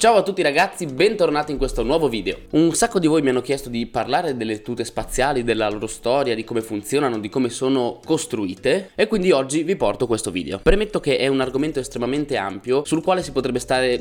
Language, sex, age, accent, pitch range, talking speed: Italian, male, 20-39, native, 120-145 Hz, 215 wpm